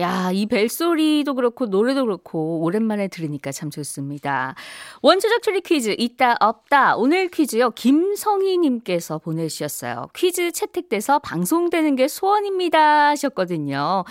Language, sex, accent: Korean, female, native